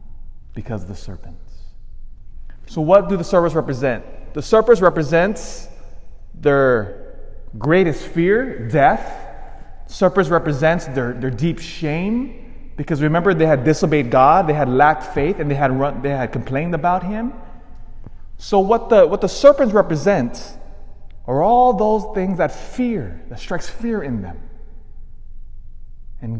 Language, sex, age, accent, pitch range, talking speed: English, male, 30-49, American, 120-190 Hz, 140 wpm